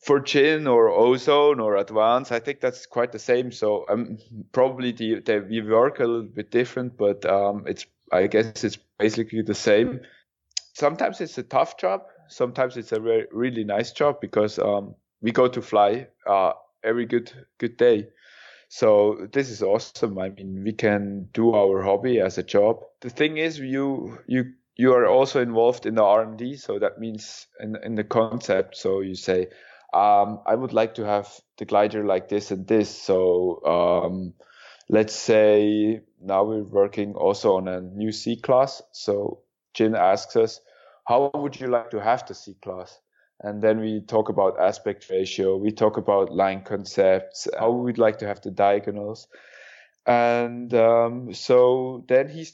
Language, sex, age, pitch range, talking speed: English, male, 20-39, 105-130 Hz, 175 wpm